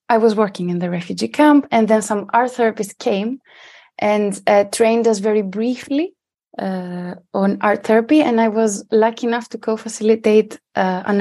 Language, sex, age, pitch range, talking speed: English, female, 20-39, 185-220 Hz, 165 wpm